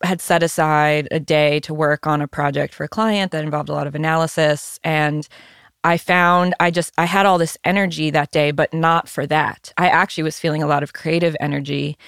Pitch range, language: 150-170 Hz, English